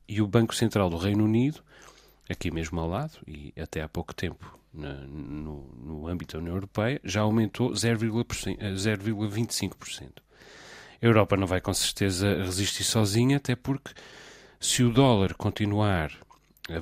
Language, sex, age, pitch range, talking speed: Portuguese, male, 40-59, 90-115 Hz, 150 wpm